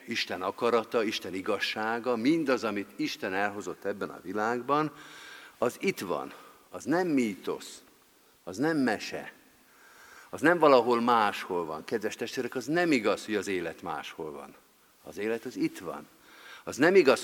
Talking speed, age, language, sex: 150 wpm, 50-69, Hungarian, male